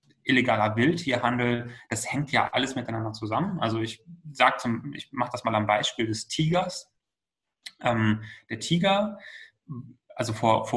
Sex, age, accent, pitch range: male, 30-49, German, 110-140 Hz